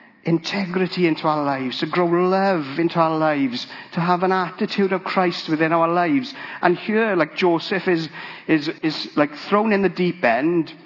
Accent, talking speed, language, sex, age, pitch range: British, 175 wpm, English, male, 50-69, 145-180 Hz